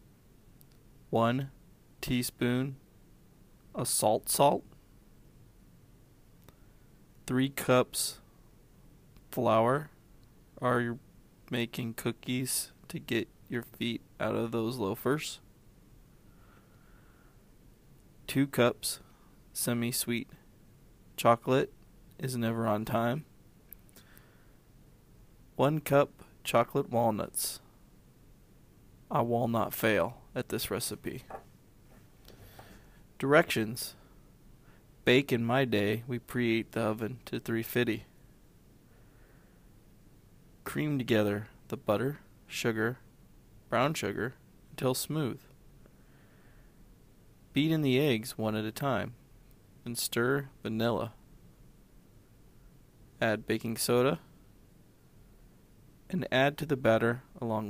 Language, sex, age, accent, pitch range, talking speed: English, male, 20-39, American, 110-130 Hz, 80 wpm